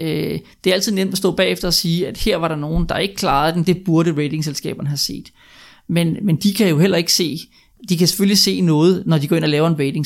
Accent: native